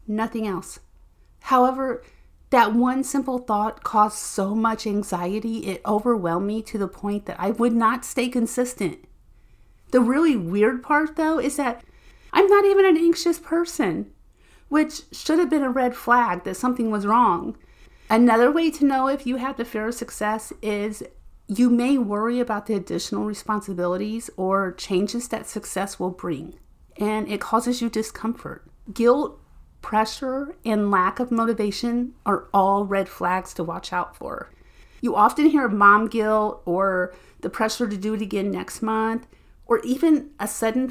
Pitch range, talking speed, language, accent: 195-245 Hz, 160 wpm, English, American